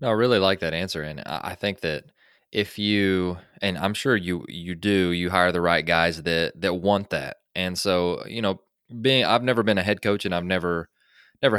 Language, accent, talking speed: English, American, 215 wpm